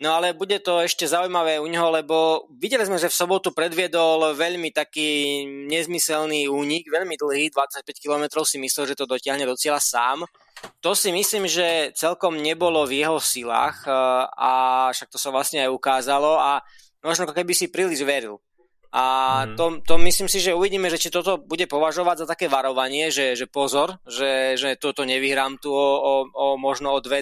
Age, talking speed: 20-39, 185 wpm